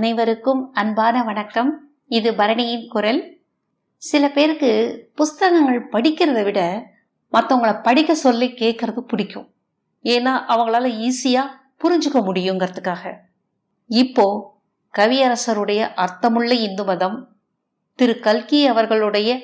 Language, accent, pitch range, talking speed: Tamil, native, 200-250 Hz, 45 wpm